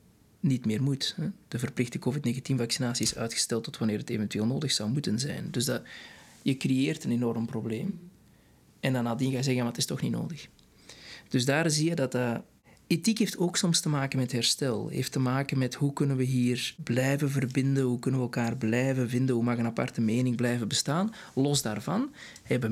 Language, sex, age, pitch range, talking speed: Dutch, male, 20-39, 120-155 Hz, 200 wpm